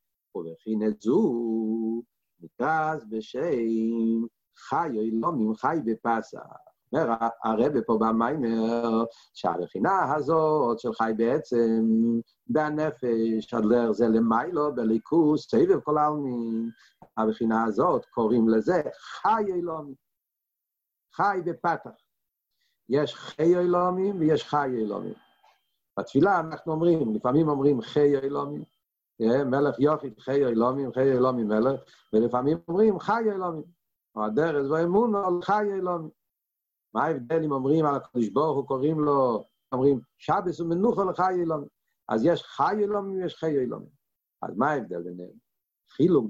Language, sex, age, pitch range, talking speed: Hebrew, male, 50-69, 115-160 Hz, 120 wpm